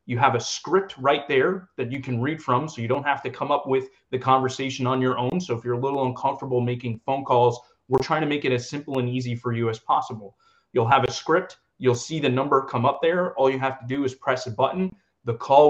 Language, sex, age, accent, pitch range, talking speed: English, male, 30-49, American, 120-140 Hz, 260 wpm